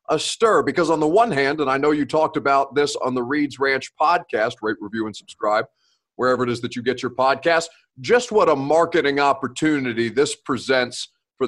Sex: male